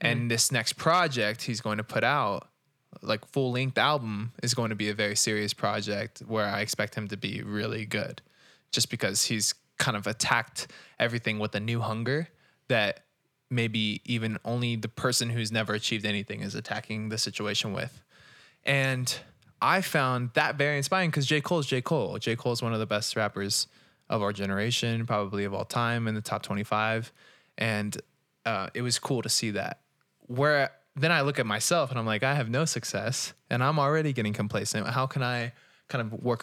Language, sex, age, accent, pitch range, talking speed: English, male, 20-39, American, 110-135 Hz, 195 wpm